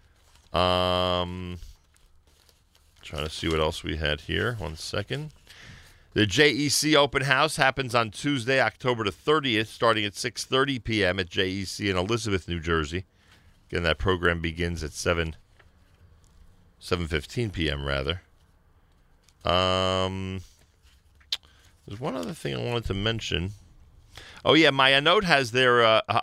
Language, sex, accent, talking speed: English, male, American, 130 wpm